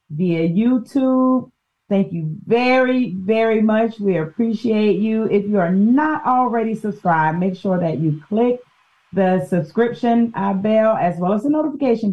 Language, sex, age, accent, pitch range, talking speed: English, female, 40-59, American, 155-210 Hz, 150 wpm